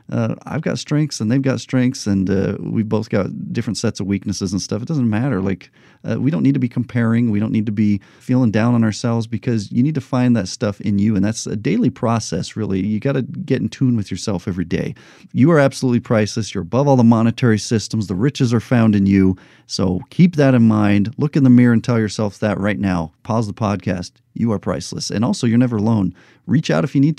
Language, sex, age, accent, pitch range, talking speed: English, male, 40-59, American, 100-120 Hz, 245 wpm